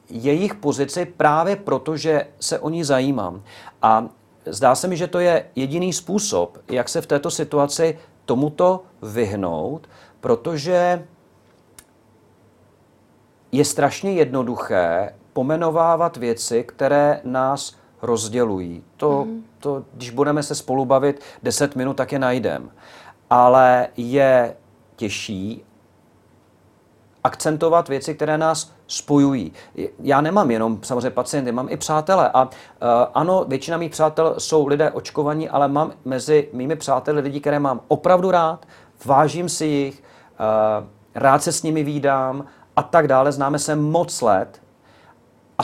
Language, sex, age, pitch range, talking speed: Czech, male, 40-59, 125-160 Hz, 125 wpm